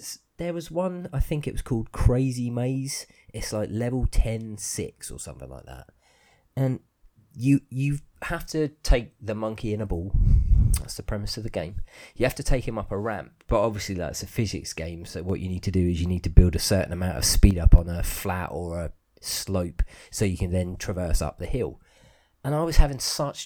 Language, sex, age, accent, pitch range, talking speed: English, male, 30-49, British, 95-120 Hz, 220 wpm